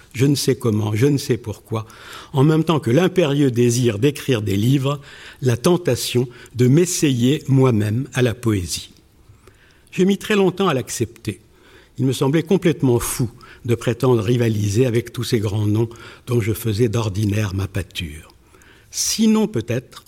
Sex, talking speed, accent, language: male, 155 wpm, French, French